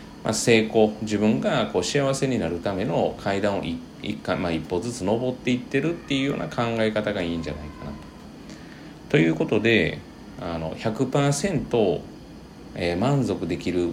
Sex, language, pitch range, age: male, Japanese, 85-125 Hz, 40-59